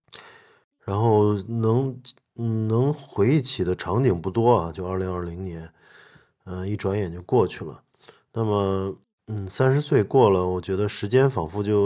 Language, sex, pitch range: Chinese, male, 90-115 Hz